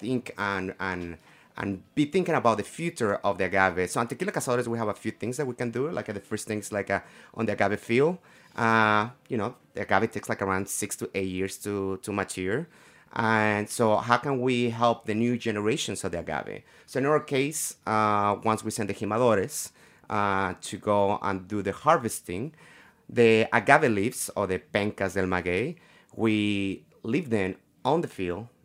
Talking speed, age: 195 wpm, 30-49